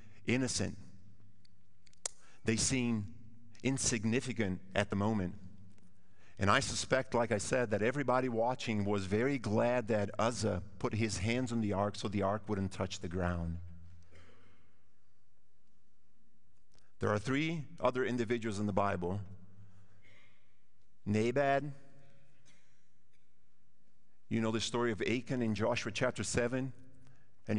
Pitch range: 100-135 Hz